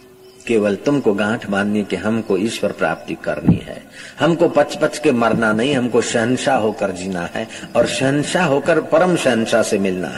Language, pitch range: Hindi, 110-145 Hz